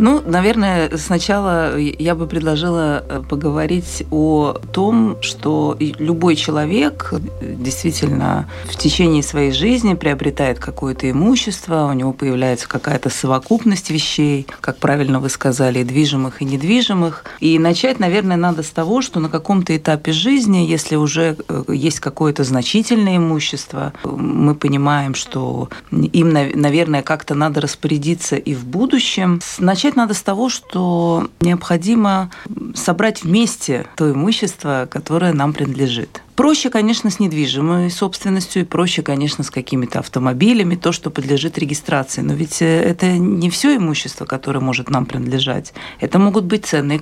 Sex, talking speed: female, 135 wpm